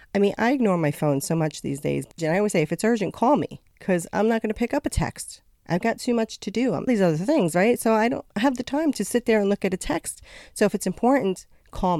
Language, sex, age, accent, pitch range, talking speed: English, female, 40-59, American, 155-210 Hz, 285 wpm